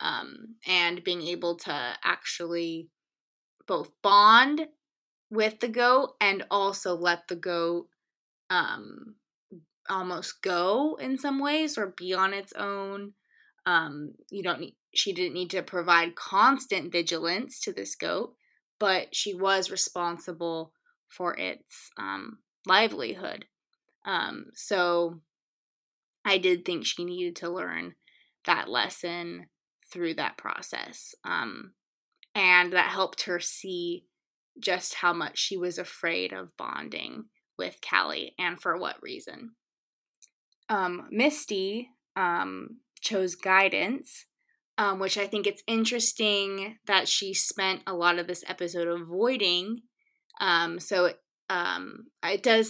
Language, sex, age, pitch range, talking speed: English, female, 20-39, 175-235 Hz, 125 wpm